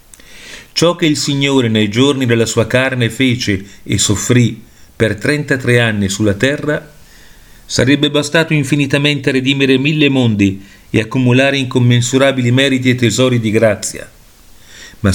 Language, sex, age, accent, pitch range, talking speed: Italian, male, 40-59, native, 110-145 Hz, 130 wpm